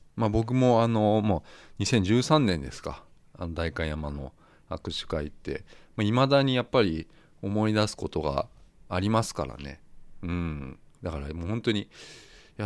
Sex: male